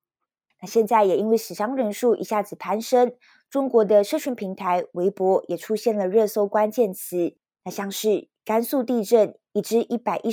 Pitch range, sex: 195-230 Hz, female